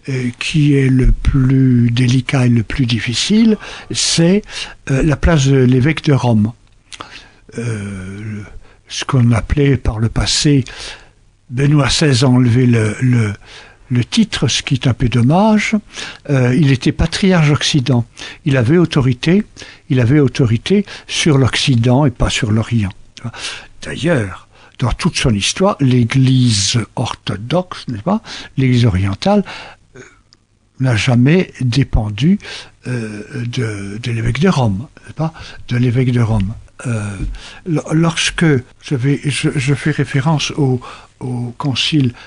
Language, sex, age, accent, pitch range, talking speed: French, male, 60-79, French, 115-145 Hz, 125 wpm